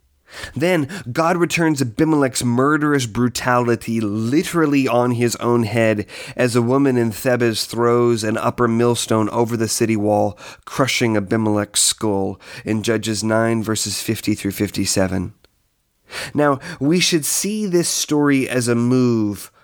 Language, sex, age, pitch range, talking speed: English, male, 30-49, 110-145 Hz, 130 wpm